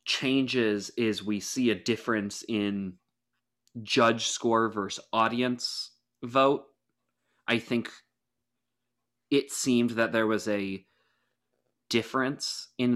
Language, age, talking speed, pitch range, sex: English, 20-39, 100 wpm, 105-125 Hz, male